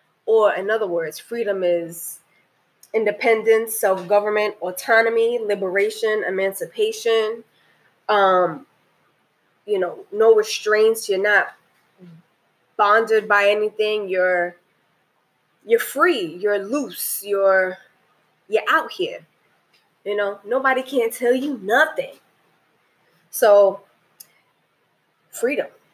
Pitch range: 190-235 Hz